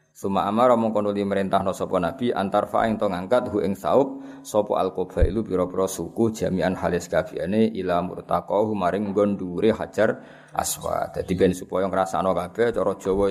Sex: male